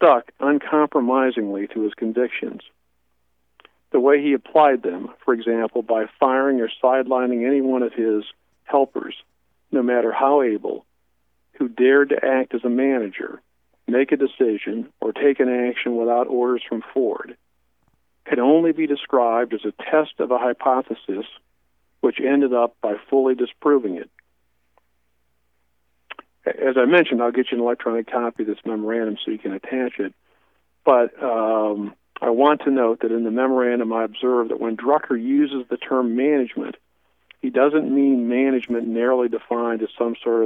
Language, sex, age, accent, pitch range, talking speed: English, male, 50-69, American, 110-130 Hz, 155 wpm